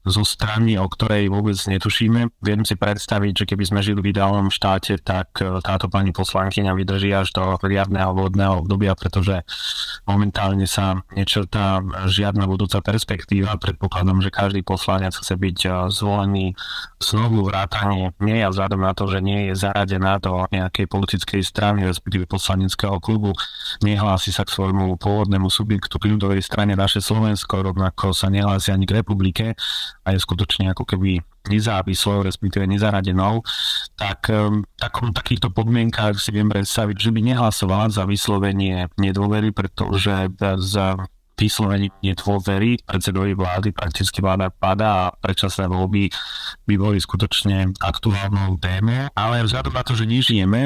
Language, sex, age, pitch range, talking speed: Slovak, male, 20-39, 95-105 Hz, 145 wpm